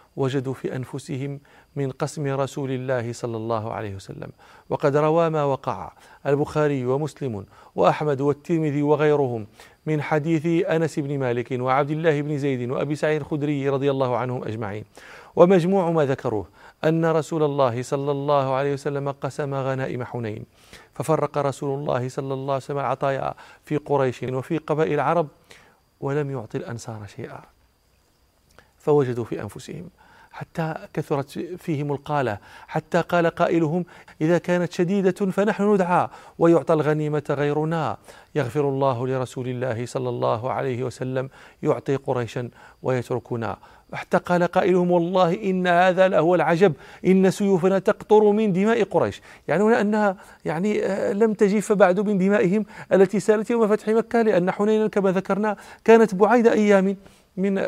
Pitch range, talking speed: 130-180 Hz, 135 wpm